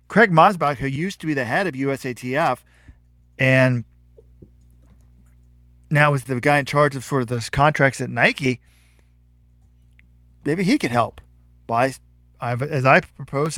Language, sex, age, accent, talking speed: English, male, 40-59, American, 140 wpm